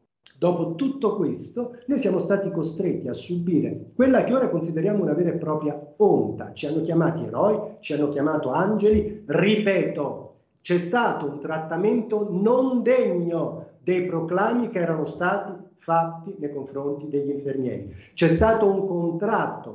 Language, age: Italian, 40-59